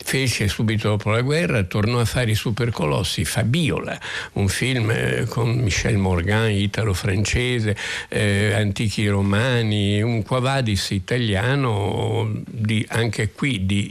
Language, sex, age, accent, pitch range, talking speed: Italian, male, 60-79, native, 100-115 Hz, 110 wpm